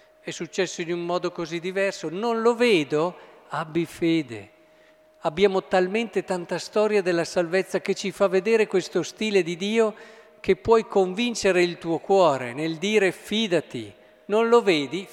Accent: native